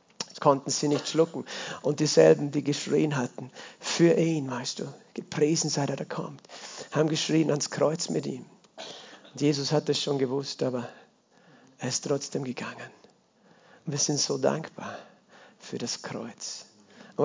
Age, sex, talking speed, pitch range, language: 50-69, male, 155 wpm, 140-160 Hz, German